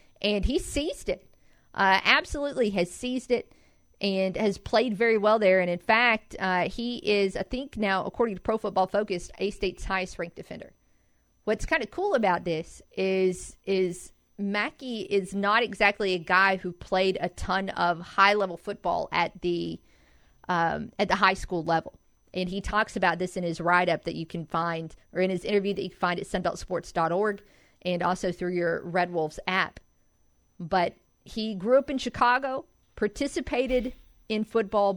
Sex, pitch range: female, 175-215 Hz